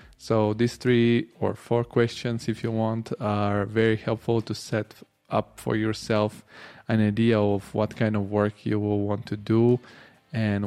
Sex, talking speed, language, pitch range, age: male, 170 wpm, English, 105-115 Hz, 20-39